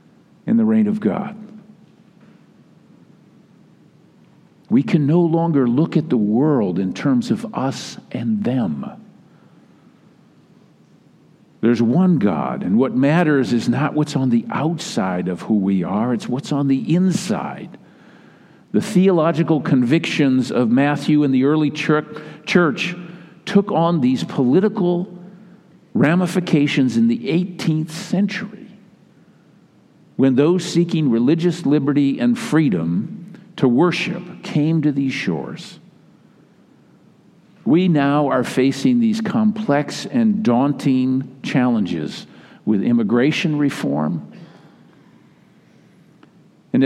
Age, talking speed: 50-69, 110 wpm